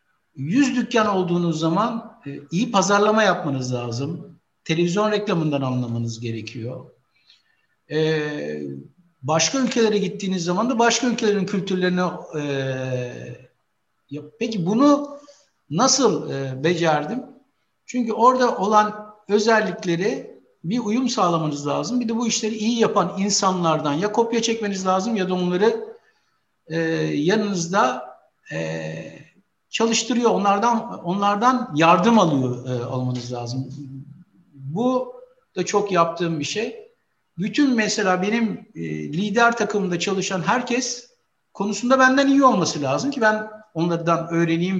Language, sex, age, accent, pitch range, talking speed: Turkish, male, 60-79, native, 150-225 Hz, 105 wpm